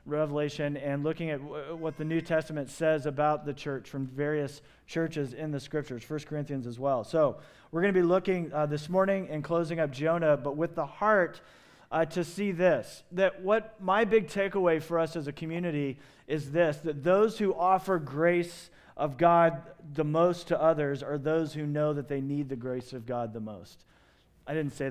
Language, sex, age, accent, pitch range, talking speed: English, male, 40-59, American, 145-175 Hz, 200 wpm